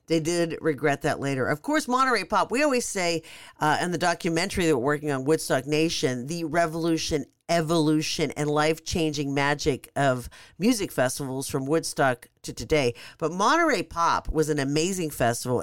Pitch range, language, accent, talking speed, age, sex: 145-180 Hz, English, American, 160 wpm, 50-69, female